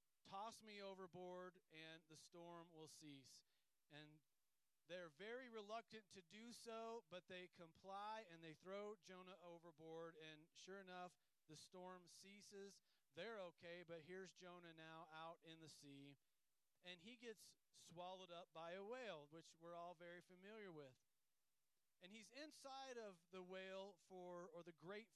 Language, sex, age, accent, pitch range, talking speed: English, male, 40-59, American, 160-195 Hz, 150 wpm